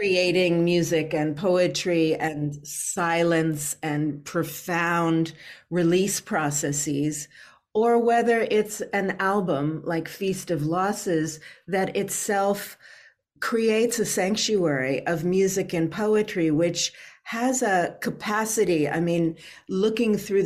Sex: female